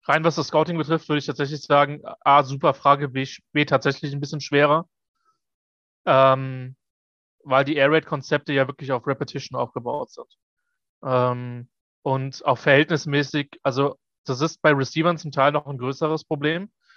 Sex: male